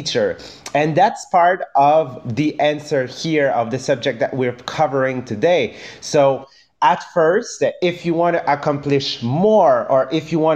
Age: 30-49